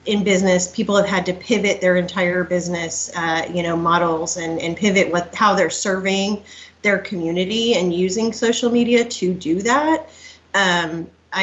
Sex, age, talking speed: female, 30-49, 165 wpm